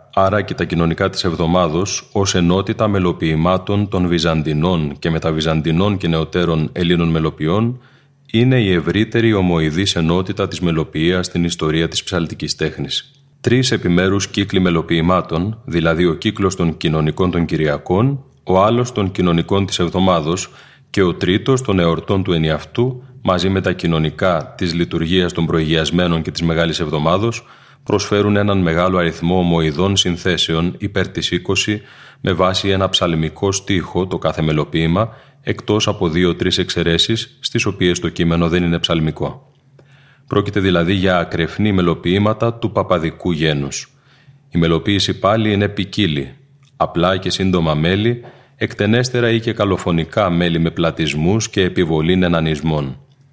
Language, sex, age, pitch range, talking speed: Greek, male, 30-49, 85-105 Hz, 135 wpm